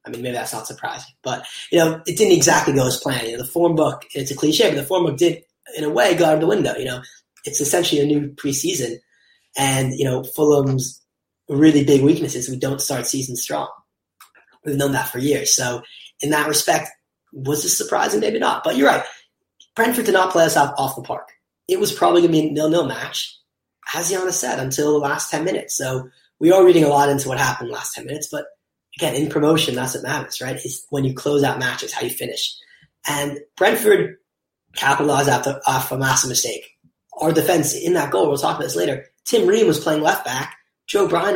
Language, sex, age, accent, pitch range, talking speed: English, male, 30-49, American, 135-175 Hz, 225 wpm